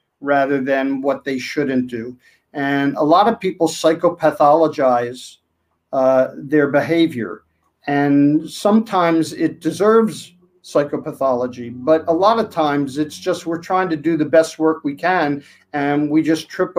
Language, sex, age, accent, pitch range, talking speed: English, male, 50-69, American, 135-165 Hz, 145 wpm